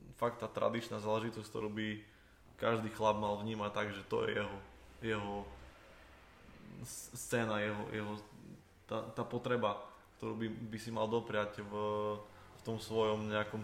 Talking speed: 140 wpm